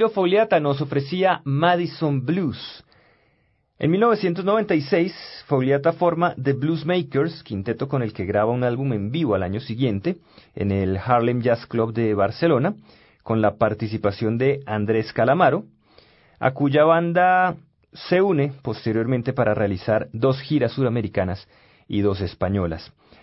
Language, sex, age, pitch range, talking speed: Spanish, male, 40-59, 110-150 Hz, 130 wpm